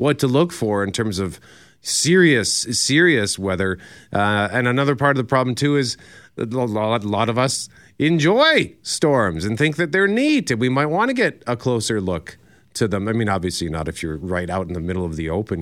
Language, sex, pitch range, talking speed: English, male, 95-130 Hz, 225 wpm